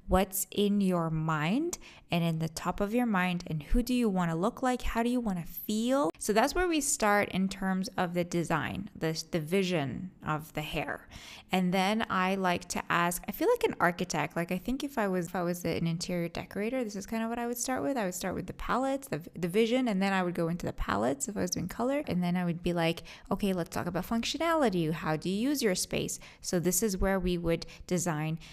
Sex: female